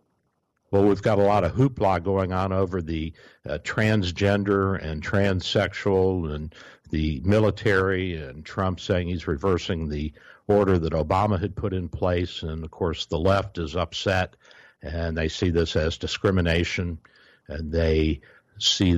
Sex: male